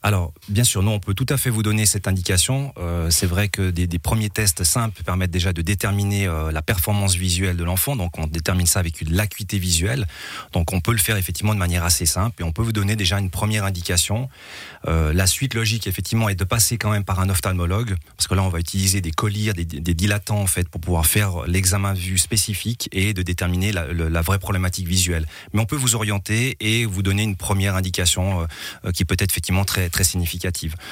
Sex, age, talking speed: male, 30-49, 230 wpm